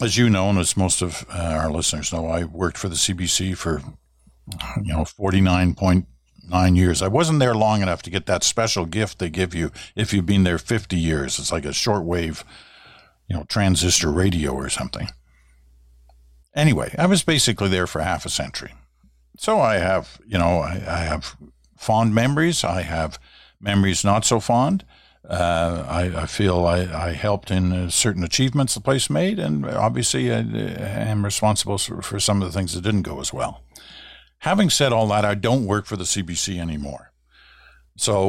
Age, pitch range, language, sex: 50-69, 85-110 Hz, English, male